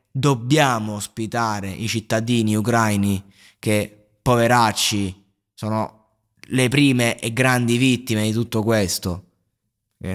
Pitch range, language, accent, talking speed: 105-130 Hz, Italian, native, 100 wpm